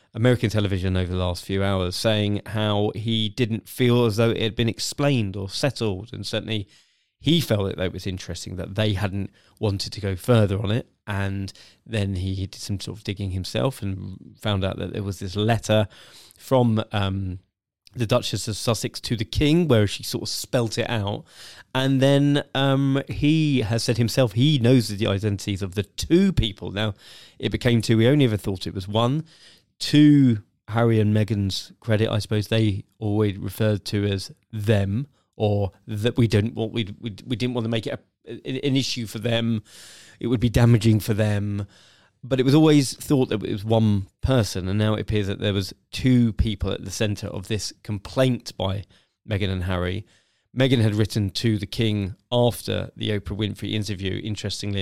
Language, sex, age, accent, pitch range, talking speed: English, male, 20-39, British, 100-120 Hz, 190 wpm